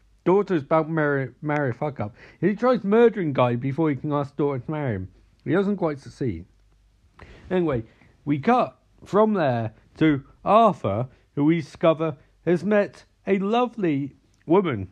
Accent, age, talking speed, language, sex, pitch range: British, 50-69, 150 wpm, English, male, 110-180 Hz